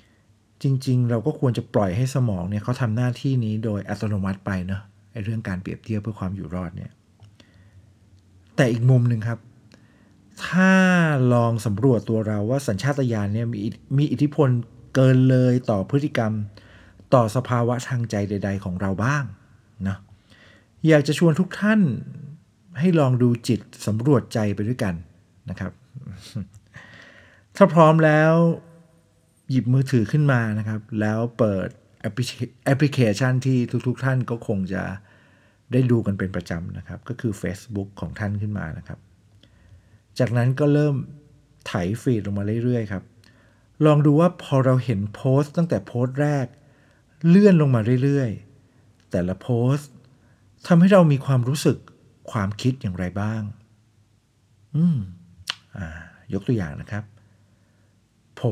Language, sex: Thai, male